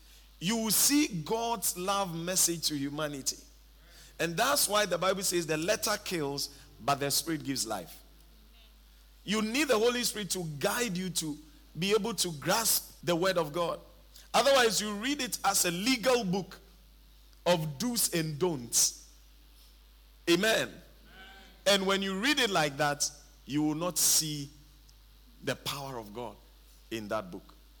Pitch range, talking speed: 150-195 Hz, 150 wpm